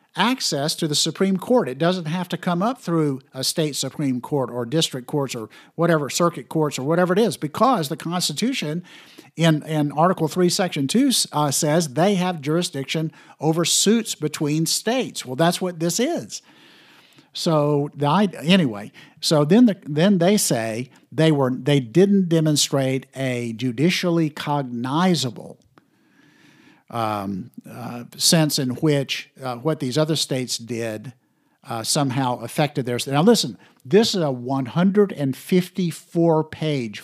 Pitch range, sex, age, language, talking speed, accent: 130-175 Hz, male, 50-69, English, 145 wpm, American